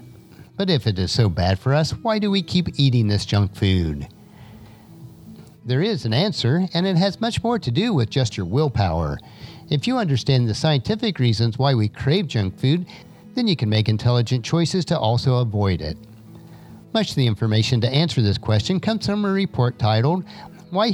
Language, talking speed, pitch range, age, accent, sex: English, 190 wpm, 110-180 Hz, 50-69, American, male